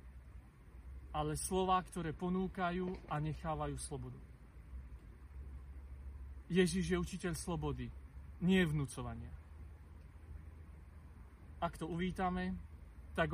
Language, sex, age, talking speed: Slovak, male, 40-59, 75 wpm